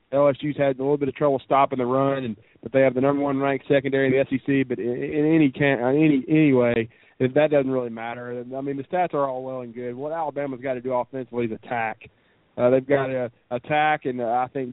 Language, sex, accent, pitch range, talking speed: English, male, American, 130-145 Hz, 255 wpm